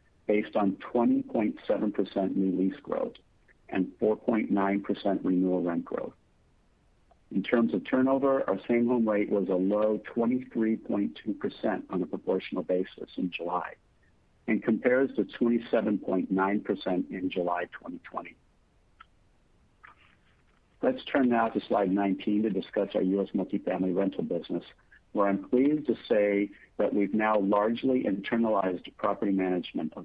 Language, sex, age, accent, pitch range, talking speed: English, male, 50-69, American, 95-115 Hz, 130 wpm